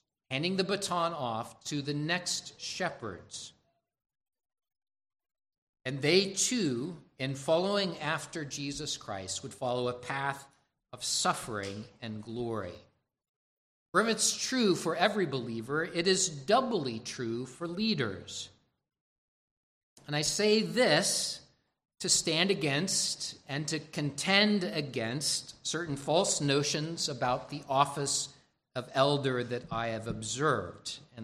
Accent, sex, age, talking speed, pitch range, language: American, male, 50-69, 120 wpm, 125-170 Hz, English